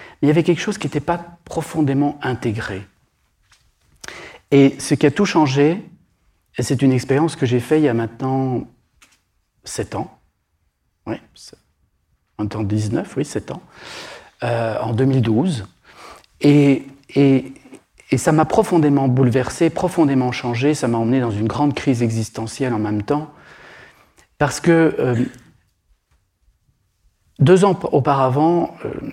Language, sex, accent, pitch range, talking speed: French, male, French, 115-140 Hz, 130 wpm